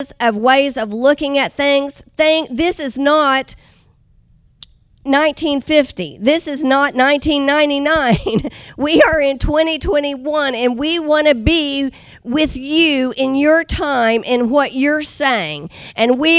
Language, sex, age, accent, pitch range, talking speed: English, female, 50-69, American, 260-315 Hz, 125 wpm